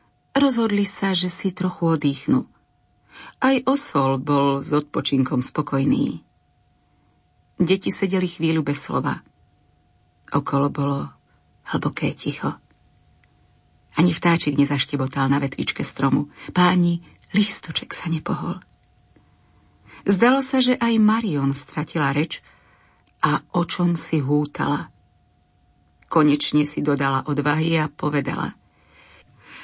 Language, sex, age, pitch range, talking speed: Slovak, female, 40-59, 145-210 Hz, 100 wpm